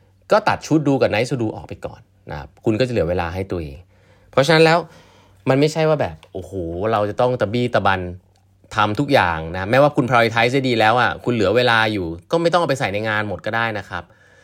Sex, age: male, 30-49